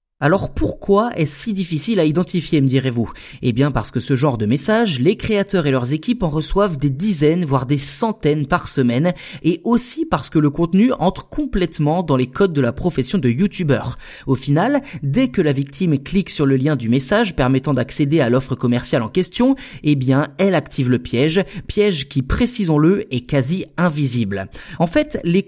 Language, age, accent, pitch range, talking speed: French, 20-39, French, 140-200 Hz, 190 wpm